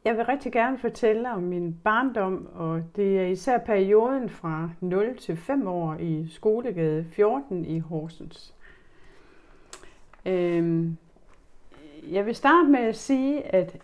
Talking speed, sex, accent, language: 130 wpm, female, native, Danish